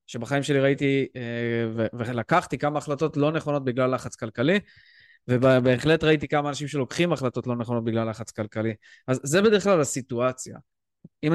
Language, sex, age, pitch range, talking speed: Hebrew, male, 20-39, 125-160 Hz, 150 wpm